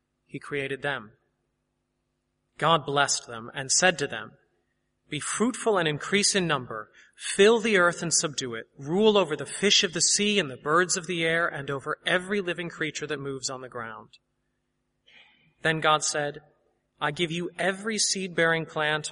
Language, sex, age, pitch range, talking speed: English, male, 30-49, 140-175 Hz, 170 wpm